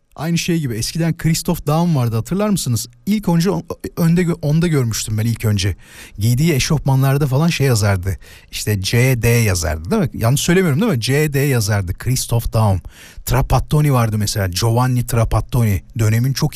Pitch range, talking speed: 115-170 Hz, 150 wpm